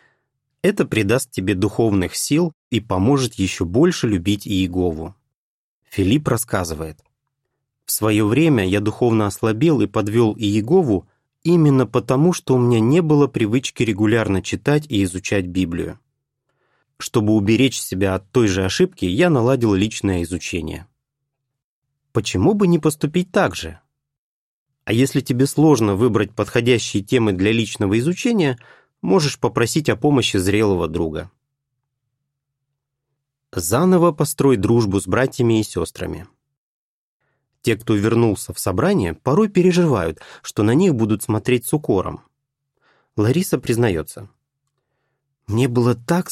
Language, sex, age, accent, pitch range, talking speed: Russian, male, 30-49, native, 105-140 Hz, 120 wpm